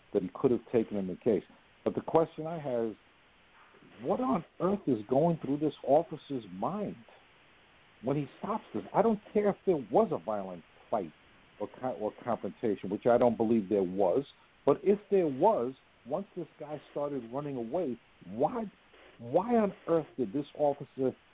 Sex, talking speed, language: male, 170 wpm, English